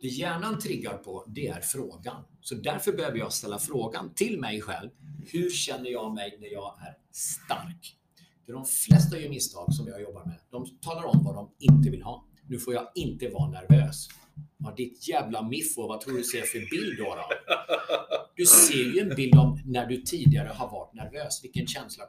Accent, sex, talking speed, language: native, male, 205 wpm, Swedish